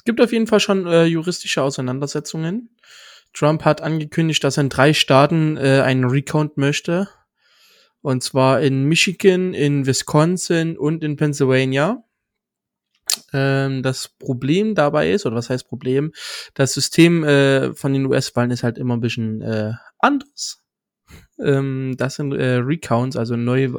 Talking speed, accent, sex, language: 145 wpm, German, male, German